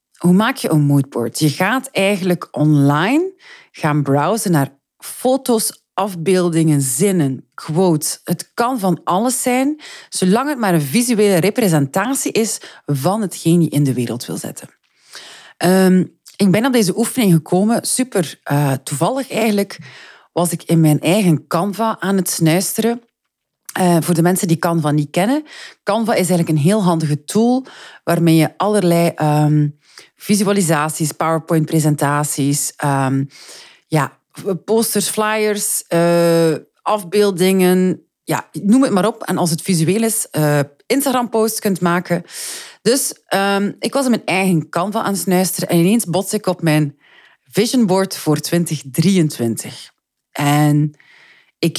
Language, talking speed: Dutch, 140 wpm